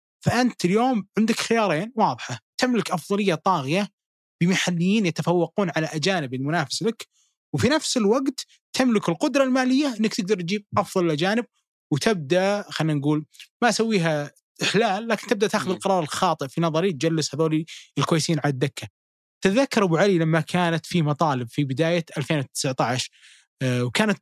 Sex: male